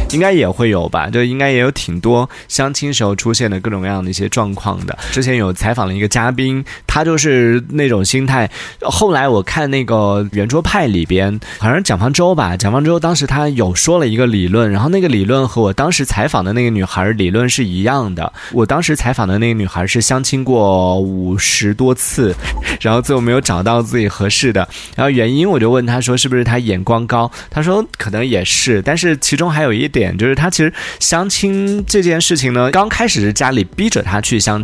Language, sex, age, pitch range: Chinese, male, 20-39, 105-150 Hz